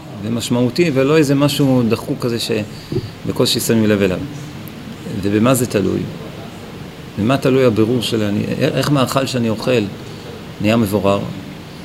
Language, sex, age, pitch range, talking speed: Hebrew, male, 40-59, 110-135 Hz, 120 wpm